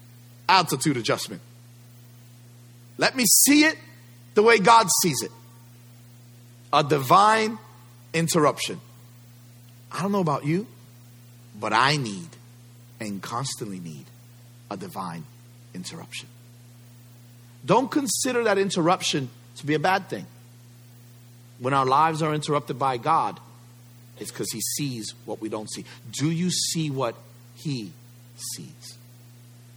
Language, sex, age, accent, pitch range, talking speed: English, male, 50-69, American, 120-150 Hz, 115 wpm